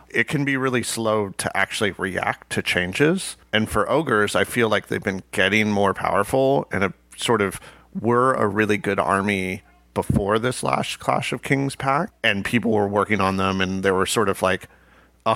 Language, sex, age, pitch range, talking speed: English, male, 40-59, 95-110 Hz, 190 wpm